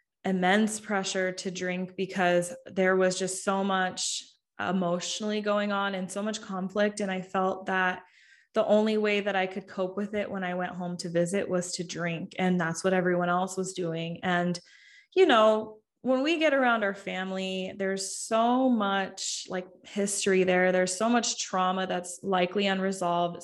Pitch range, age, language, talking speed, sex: 180-205 Hz, 20-39, English, 175 wpm, female